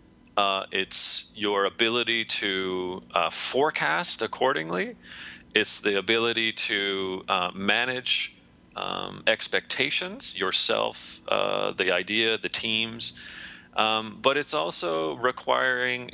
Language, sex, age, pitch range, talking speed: English, male, 30-49, 95-120 Hz, 100 wpm